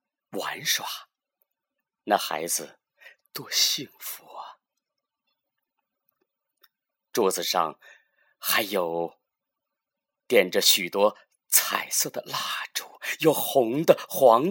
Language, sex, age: Chinese, male, 30-49